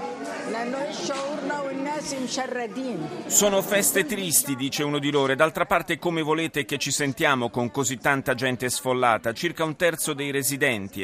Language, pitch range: Italian, 110-150 Hz